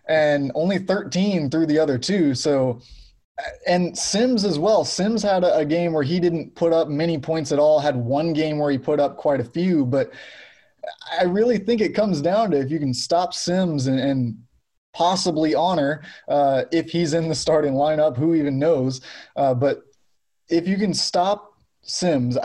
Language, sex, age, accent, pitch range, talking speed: English, male, 20-39, American, 135-170 Hz, 185 wpm